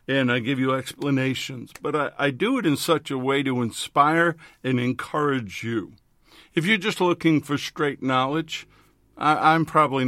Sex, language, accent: male, English, American